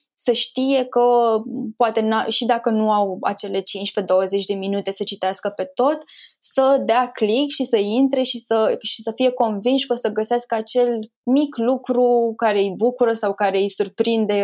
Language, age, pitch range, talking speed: Romanian, 20-39, 200-245 Hz, 170 wpm